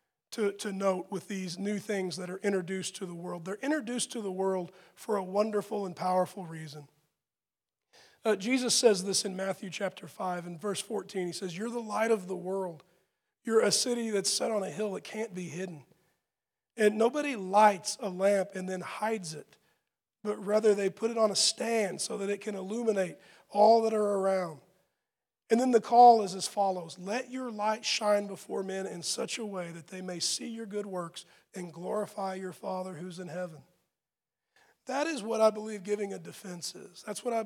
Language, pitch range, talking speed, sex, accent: English, 190-220 Hz, 200 wpm, male, American